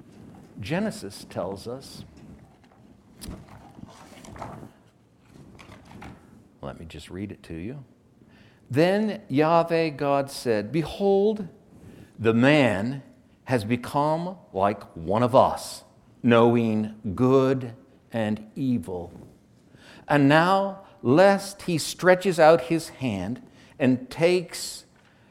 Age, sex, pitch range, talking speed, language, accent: 60-79, male, 115-160 Hz, 90 wpm, English, American